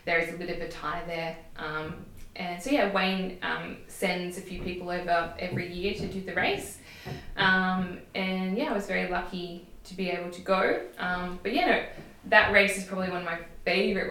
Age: 20-39